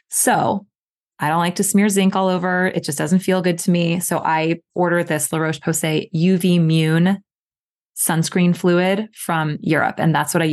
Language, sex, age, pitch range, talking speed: English, female, 20-39, 160-190 Hz, 180 wpm